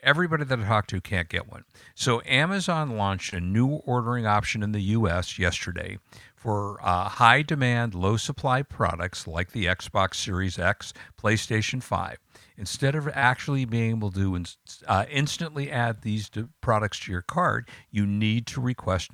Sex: male